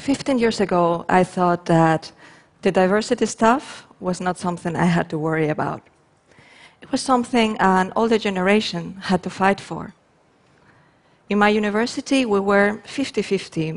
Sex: female